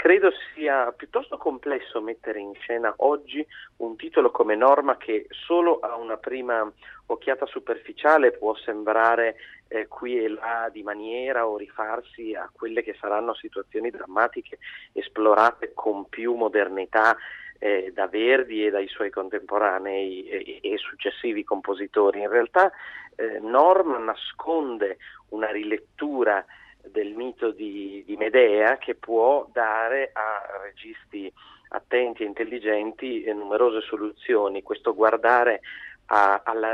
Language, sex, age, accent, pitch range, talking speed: Italian, male, 40-59, native, 105-135 Hz, 120 wpm